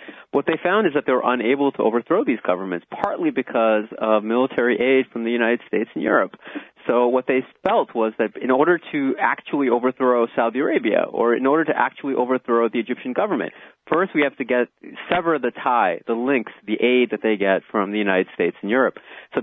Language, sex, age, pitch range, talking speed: English, male, 30-49, 110-140 Hz, 205 wpm